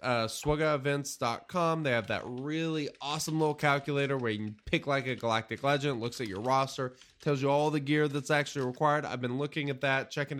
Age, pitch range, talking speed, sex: 20-39, 110-140 Hz, 210 wpm, male